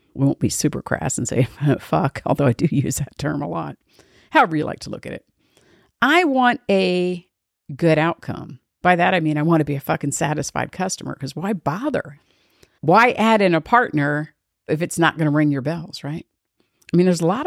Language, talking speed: English, 210 wpm